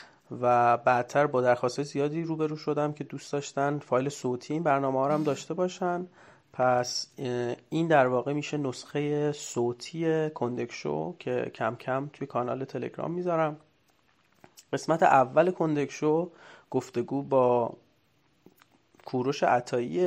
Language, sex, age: Persian, male, 30-49